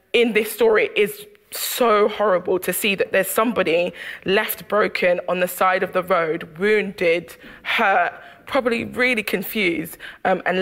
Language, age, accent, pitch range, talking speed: English, 20-39, British, 185-240 Hz, 155 wpm